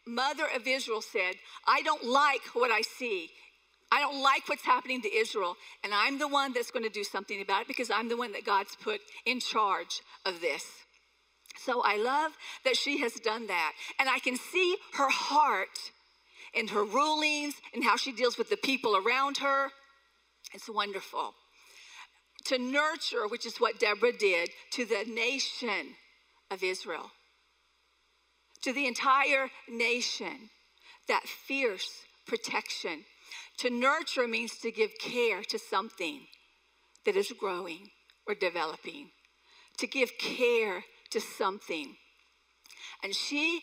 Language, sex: English, female